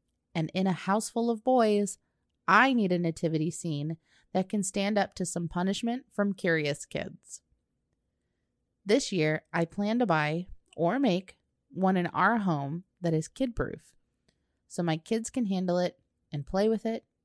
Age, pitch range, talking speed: 30-49, 165-215 Hz, 165 wpm